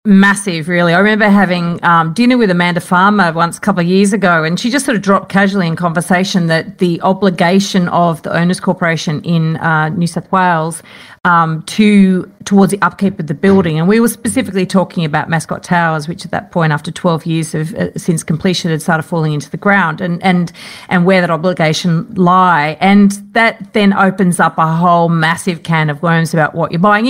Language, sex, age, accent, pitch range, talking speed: English, female, 40-59, Australian, 170-205 Hz, 205 wpm